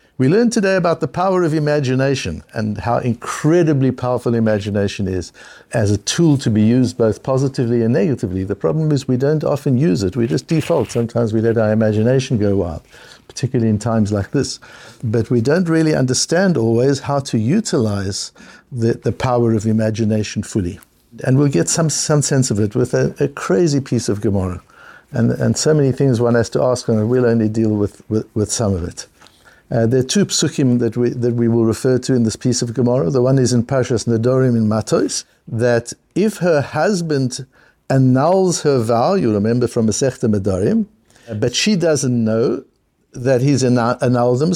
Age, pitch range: 60-79, 110-140 Hz